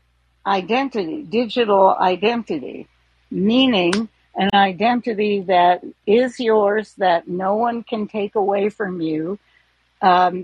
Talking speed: 105 wpm